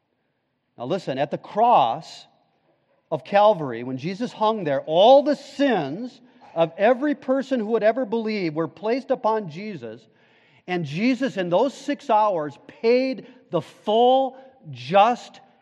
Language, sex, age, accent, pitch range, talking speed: English, male, 40-59, American, 155-225 Hz, 135 wpm